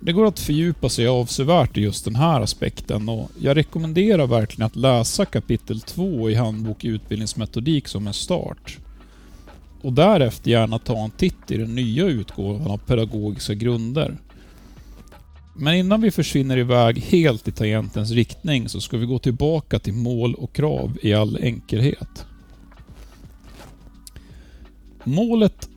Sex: male